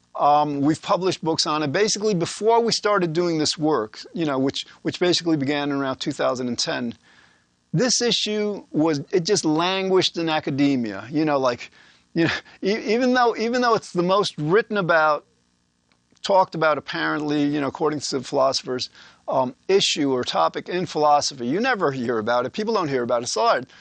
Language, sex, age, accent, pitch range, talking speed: English, male, 40-59, American, 145-185 Hz, 170 wpm